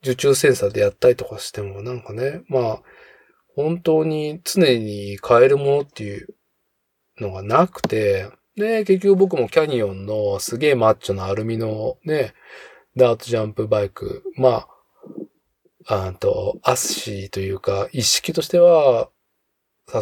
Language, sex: Japanese, male